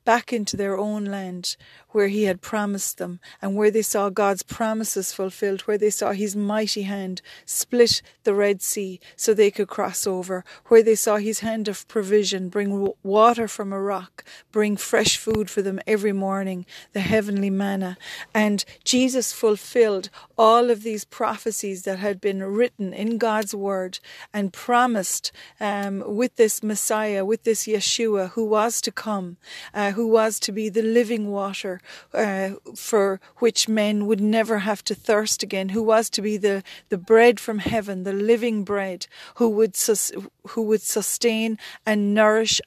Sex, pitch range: female, 195-225 Hz